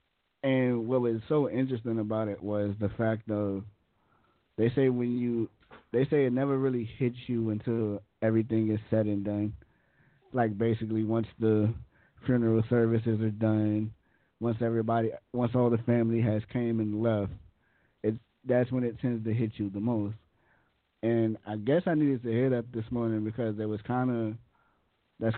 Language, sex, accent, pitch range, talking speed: English, male, American, 110-125 Hz, 170 wpm